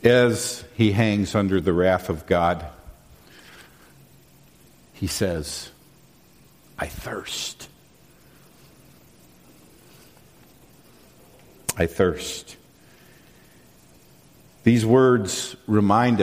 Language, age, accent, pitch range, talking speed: English, 50-69, American, 90-125 Hz, 65 wpm